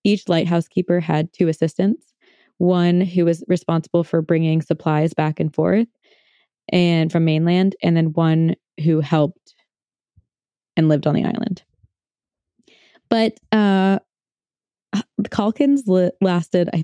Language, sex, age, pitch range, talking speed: English, female, 20-39, 165-205 Hz, 125 wpm